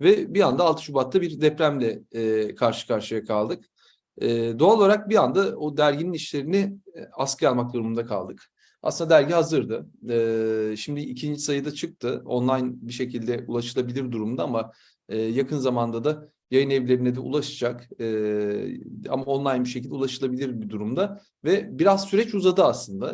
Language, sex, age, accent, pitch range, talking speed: Turkish, male, 40-59, native, 120-160 Hz, 155 wpm